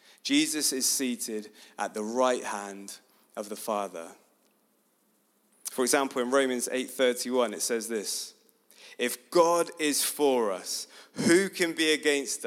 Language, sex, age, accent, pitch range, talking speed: English, male, 30-49, British, 140-200 Hz, 130 wpm